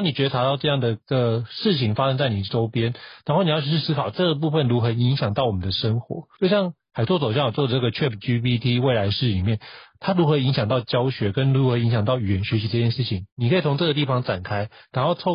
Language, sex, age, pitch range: Chinese, male, 30-49, 115-150 Hz